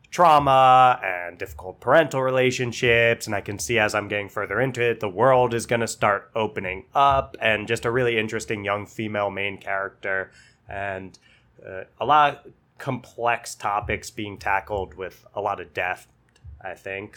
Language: English